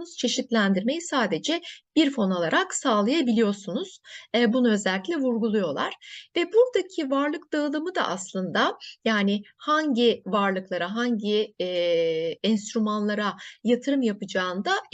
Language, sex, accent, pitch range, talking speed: Turkish, female, native, 210-305 Hz, 90 wpm